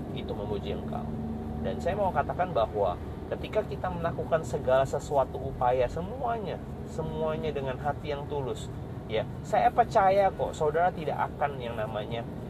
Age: 30-49